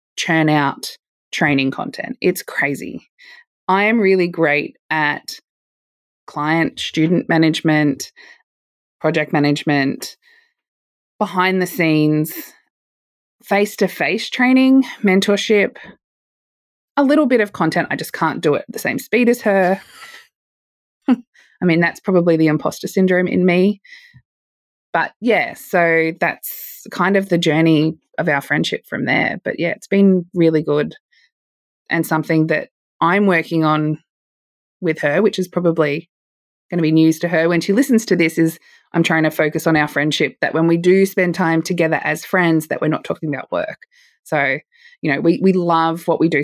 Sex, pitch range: female, 155-195 Hz